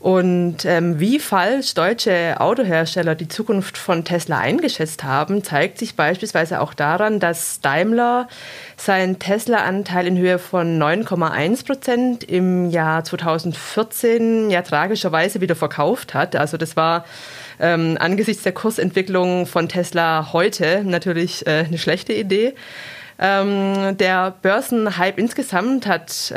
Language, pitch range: German, 160-205 Hz